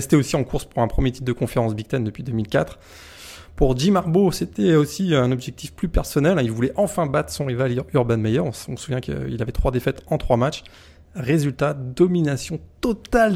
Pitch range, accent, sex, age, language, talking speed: 115-145 Hz, French, male, 20-39, French, 210 wpm